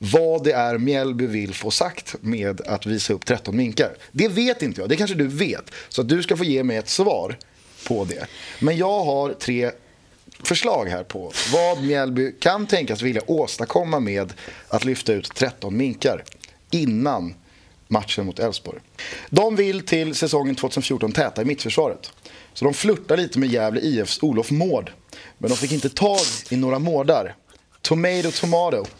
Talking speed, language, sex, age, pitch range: 170 wpm, Swedish, male, 30-49, 110-160 Hz